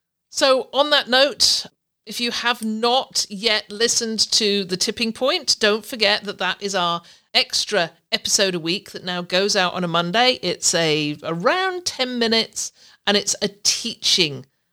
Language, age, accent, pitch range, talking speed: English, 50-69, British, 175-225 Hz, 165 wpm